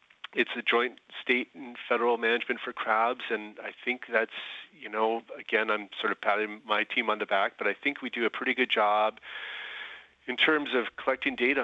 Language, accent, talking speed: English, American, 200 wpm